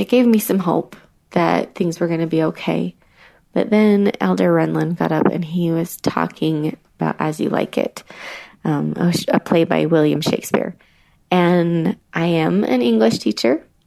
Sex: female